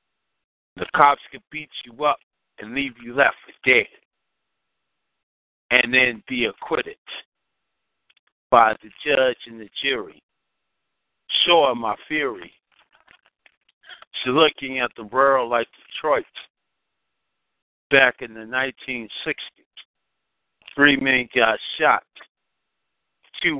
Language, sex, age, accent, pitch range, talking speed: English, male, 50-69, American, 120-140 Hz, 105 wpm